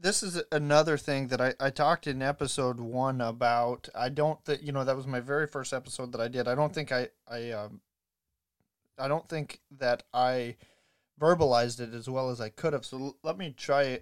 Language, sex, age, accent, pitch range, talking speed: English, male, 30-49, American, 125-150 Hz, 215 wpm